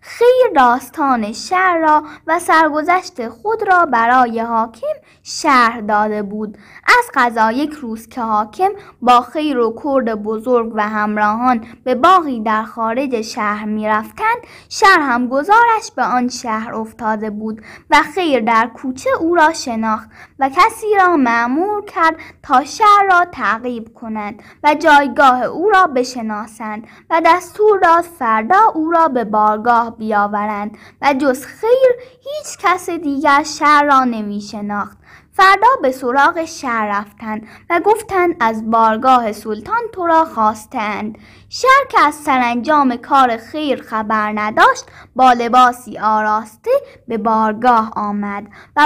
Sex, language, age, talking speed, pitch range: female, Persian, 10-29, 130 wpm, 220-325 Hz